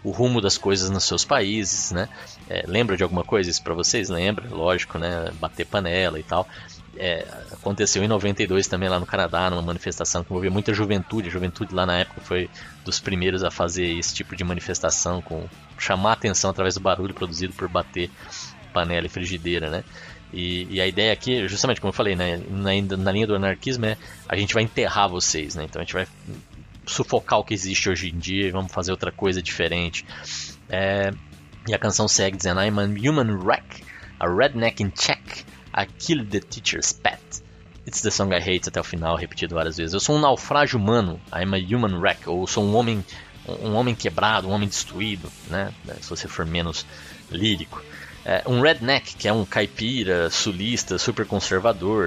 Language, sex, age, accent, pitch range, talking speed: Portuguese, male, 20-39, Brazilian, 90-105 Hz, 190 wpm